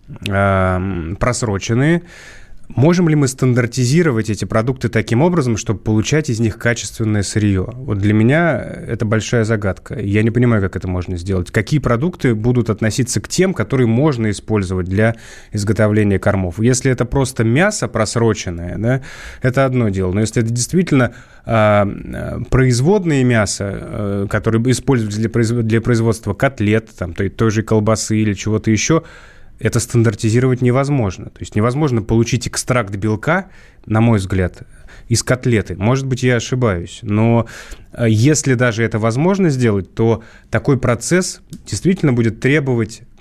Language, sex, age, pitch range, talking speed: Russian, male, 20-39, 105-125 Hz, 140 wpm